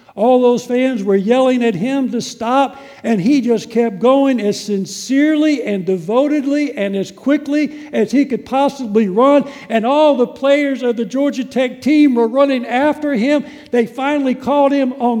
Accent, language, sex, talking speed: American, English, male, 175 wpm